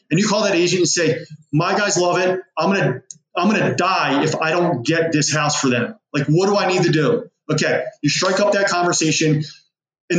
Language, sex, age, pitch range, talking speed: English, male, 20-39, 165-190 Hz, 235 wpm